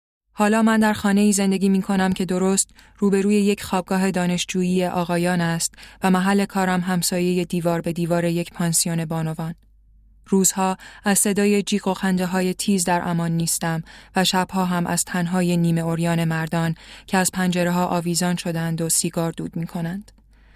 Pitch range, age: 170-195 Hz, 20-39